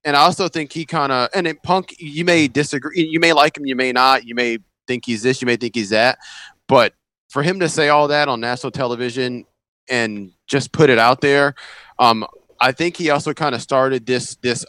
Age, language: 30-49, English